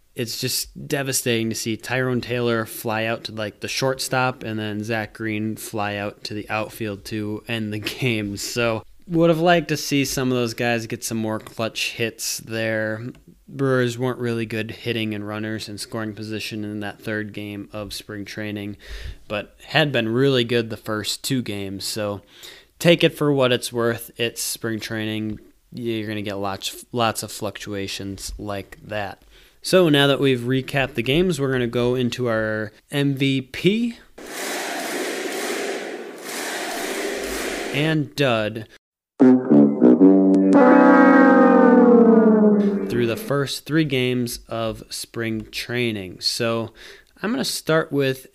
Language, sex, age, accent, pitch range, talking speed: English, male, 20-39, American, 110-140 Hz, 145 wpm